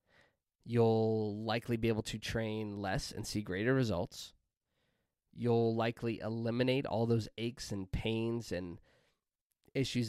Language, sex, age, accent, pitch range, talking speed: English, male, 20-39, American, 105-125 Hz, 125 wpm